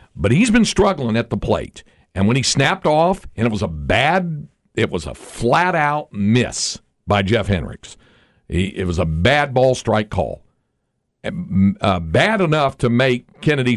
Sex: male